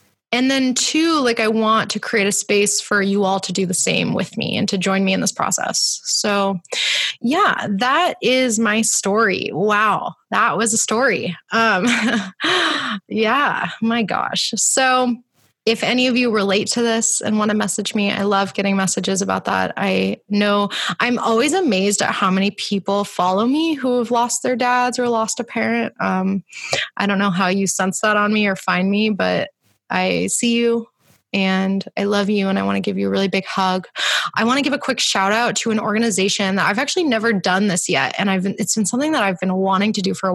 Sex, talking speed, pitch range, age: female, 215 wpm, 190-230 Hz, 20-39